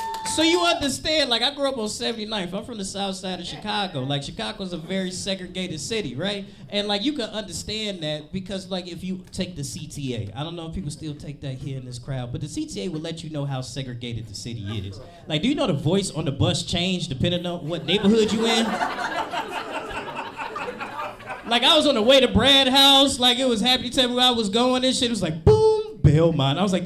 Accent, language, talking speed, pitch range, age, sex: American, English, 230 wpm, 170-275 Hz, 20-39, male